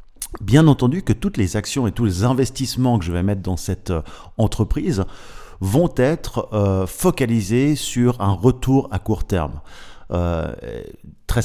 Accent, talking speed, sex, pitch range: French, 150 wpm, male, 95-115 Hz